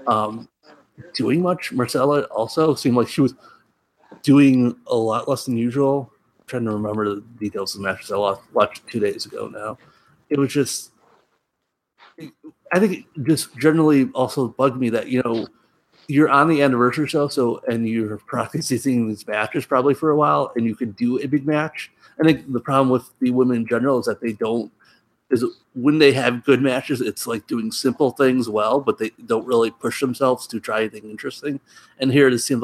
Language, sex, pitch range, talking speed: English, male, 115-140 Hz, 195 wpm